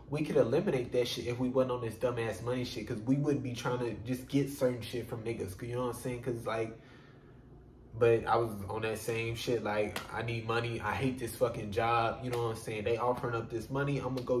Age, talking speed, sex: 20-39, 260 wpm, male